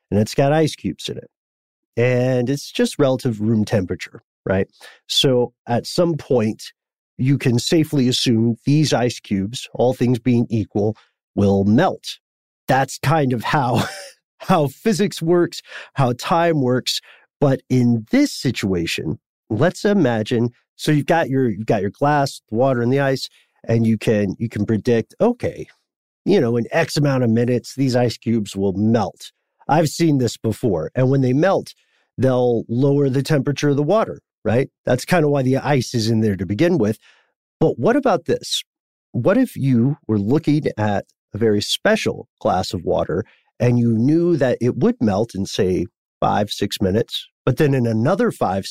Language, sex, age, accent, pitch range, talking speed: English, male, 40-59, American, 115-150 Hz, 170 wpm